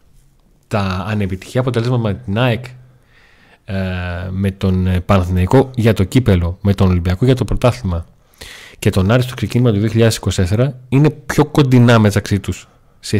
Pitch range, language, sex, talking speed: 95-125 Hz, Greek, male, 135 wpm